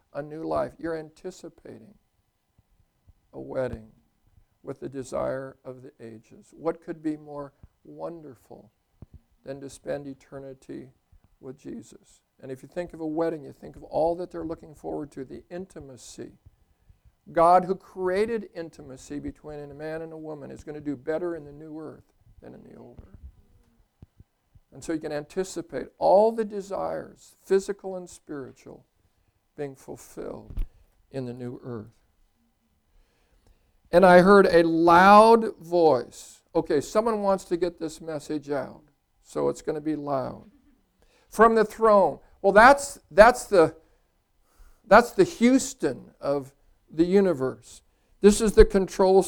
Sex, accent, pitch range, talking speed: male, American, 125-180 Hz, 145 wpm